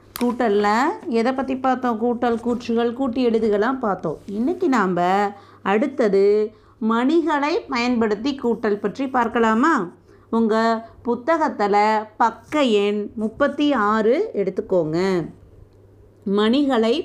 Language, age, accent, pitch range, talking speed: Tamil, 30-49, native, 200-255 Hz, 85 wpm